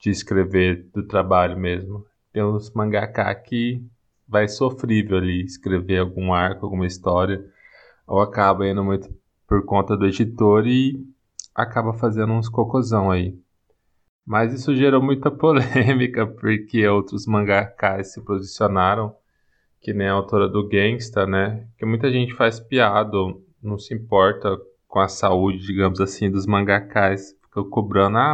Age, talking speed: 20-39, 140 wpm